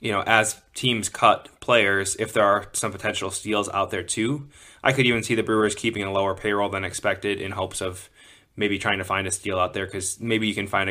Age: 20-39